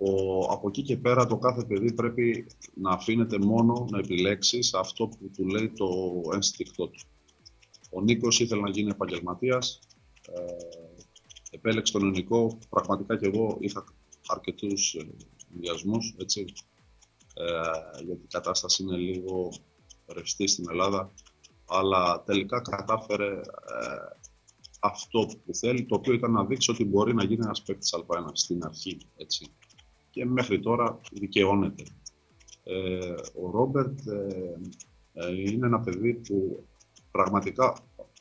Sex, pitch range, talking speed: male, 90-115 Hz, 120 wpm